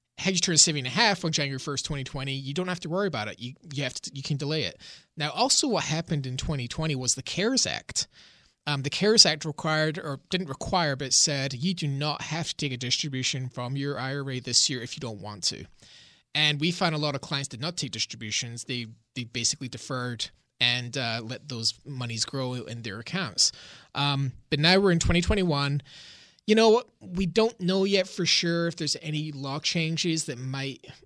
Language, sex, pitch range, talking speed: English, male, 130-170 Hz, 220 wpm